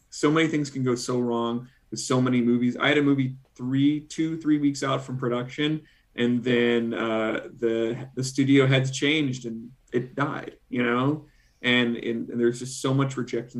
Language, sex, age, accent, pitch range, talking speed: English, male, 30-49, American, 115-125 Hz, 190 wpm